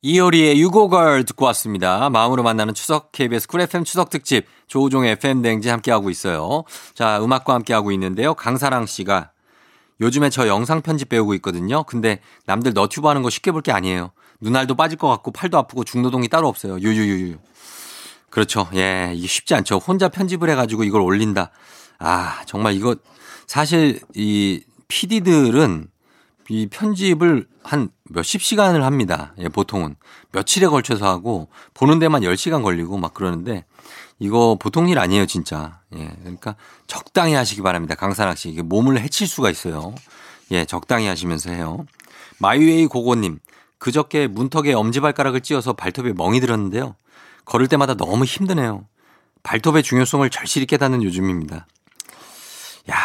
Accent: native